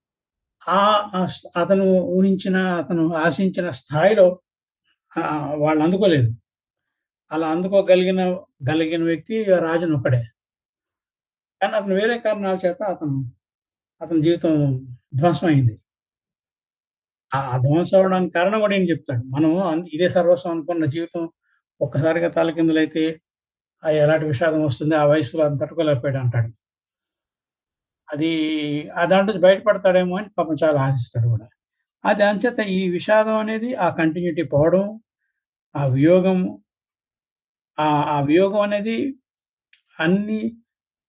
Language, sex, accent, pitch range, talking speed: Telugu, male, native, 150-190 Hz, 100 wpm